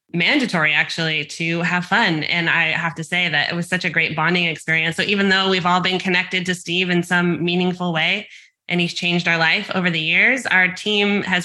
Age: 20-39